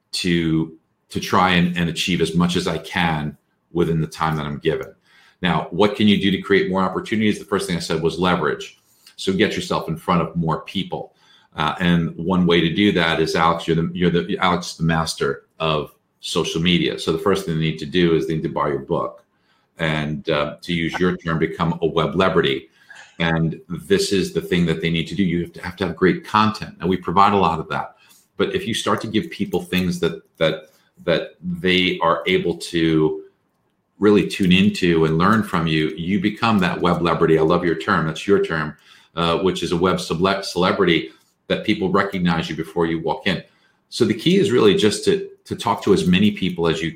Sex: male